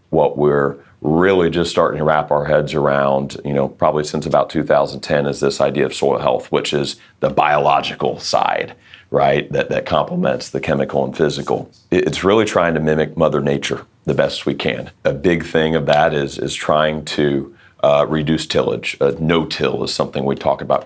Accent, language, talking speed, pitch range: American, English, 190 wpm, 70-80 Hz